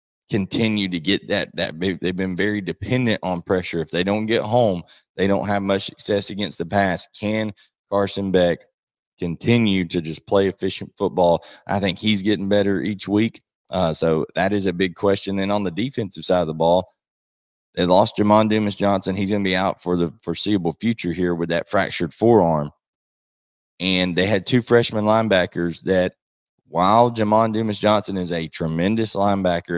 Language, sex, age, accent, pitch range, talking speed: English, male, 20-39, American, 85-105 Hz, 180 wpm